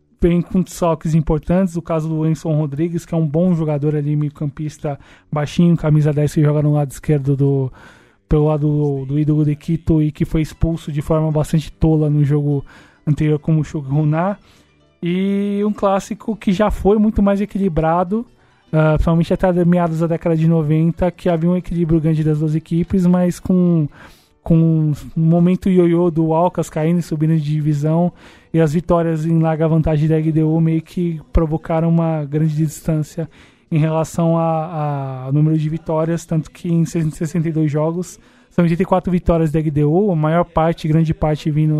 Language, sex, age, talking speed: Portuguese, male, 20-39, 175 wpm